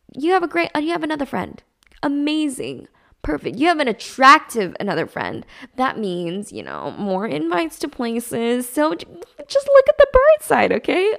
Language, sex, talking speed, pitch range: English, female, 170 wpm, 195-270 Hz